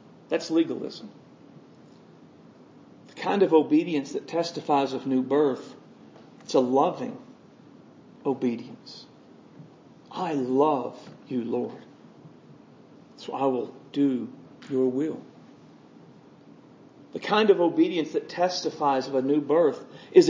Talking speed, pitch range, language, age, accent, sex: 105 wpm, 130-155 Hz, English, 50-69, American, male